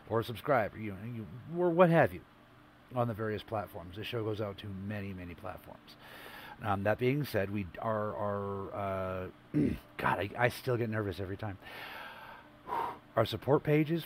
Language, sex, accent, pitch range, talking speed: English, male, American, 100-120 Hz, 175 wpm